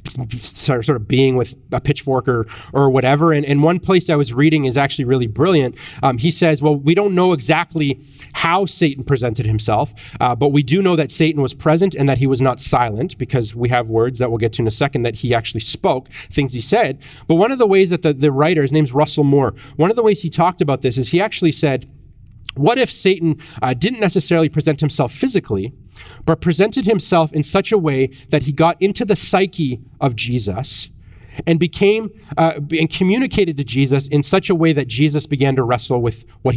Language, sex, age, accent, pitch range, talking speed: English, male, 30-49, American, 125-165 Hz, 215 wpm